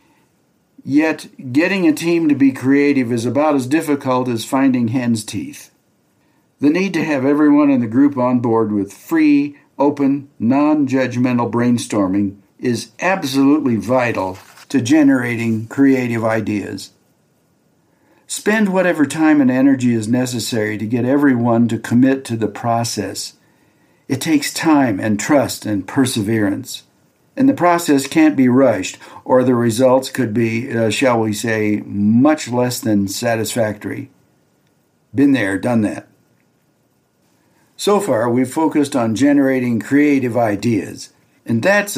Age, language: 60-79, English